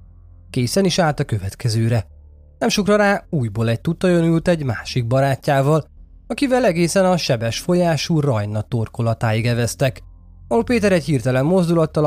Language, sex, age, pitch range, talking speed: Hungarian, male, 20-39, 110-160 Hz, 140 wpm